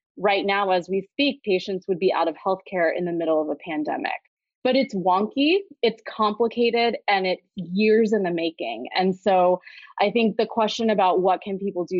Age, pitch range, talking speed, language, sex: 20-39, 180-225 Hz, 195 wpm, English, female